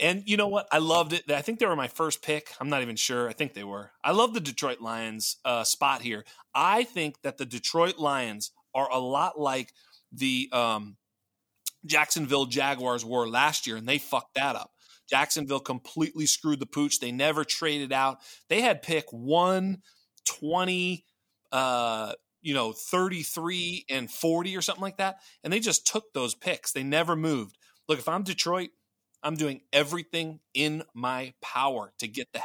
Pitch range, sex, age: 130-165 Hz, male, 30-49